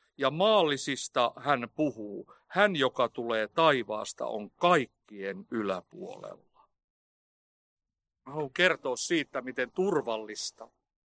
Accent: native